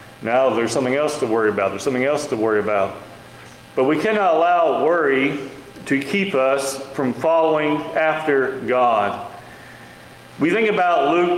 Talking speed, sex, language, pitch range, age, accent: 155 wpm, male, English, 135-175 Hz, 40-59, American